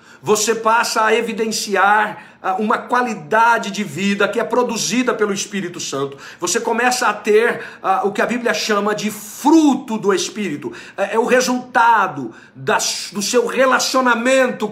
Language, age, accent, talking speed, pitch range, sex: Portuguese, 50-69, Brazilian, 135 wpm, 210-245 Hz, male